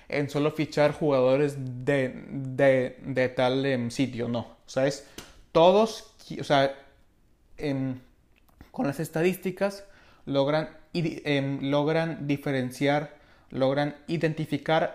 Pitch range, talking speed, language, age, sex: 135-160 Hz, 105 wpm, Spanish, 20-39, male